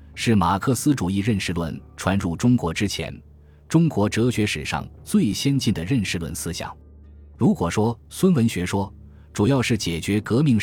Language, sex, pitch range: Chinese, male, 85-115 Hz